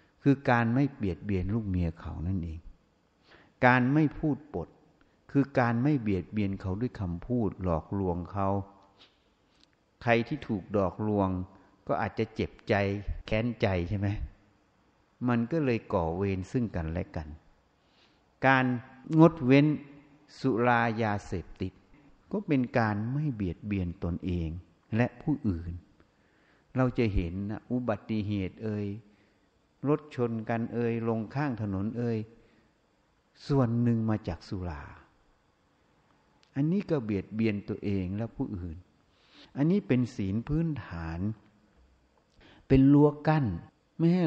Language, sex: Thai, male